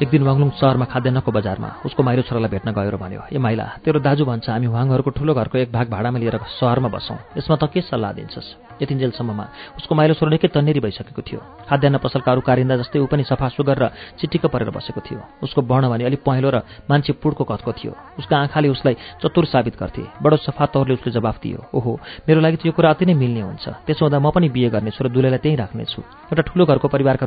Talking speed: 40 wpm